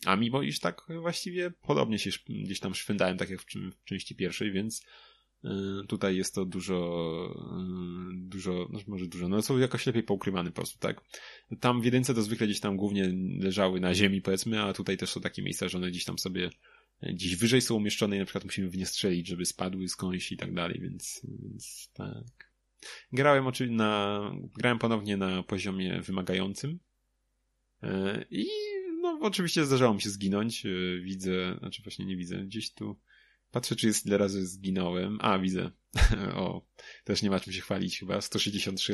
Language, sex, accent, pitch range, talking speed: Polish, male, native, 95-120 Hz, 175 wpm